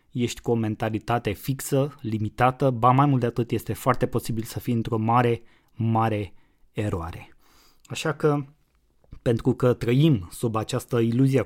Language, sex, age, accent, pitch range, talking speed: Romanian, male, 20-39, native, 105-125 Hz, 145 wpm